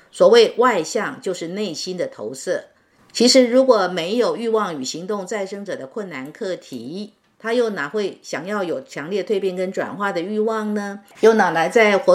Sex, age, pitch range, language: female, 50-69, 185-235 Hz, Chinese